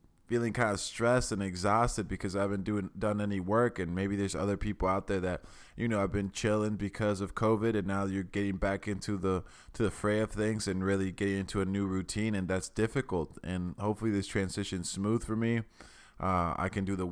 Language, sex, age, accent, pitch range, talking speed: English, male, 20-39, American, 95-110 Hz, 215 wpm